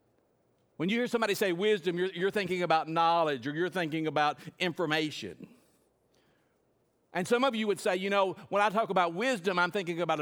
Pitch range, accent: 150-190 Hz, American